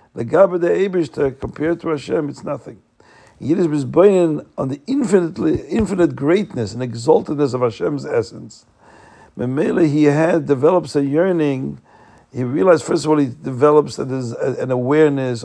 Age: 50-69